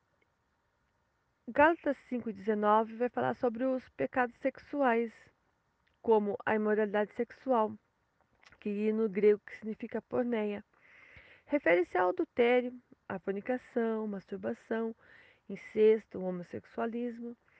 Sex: female